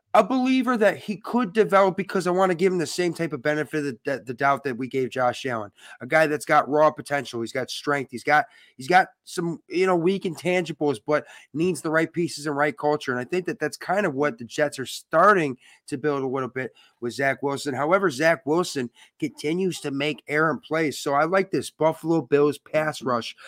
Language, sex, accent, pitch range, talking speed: English, male, American, 135-180 Hz, 225 wpm